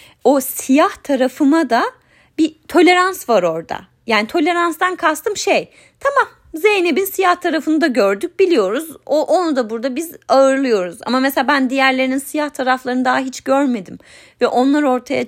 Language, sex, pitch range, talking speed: Turkish, female, 205-305 Hz, 140 wpm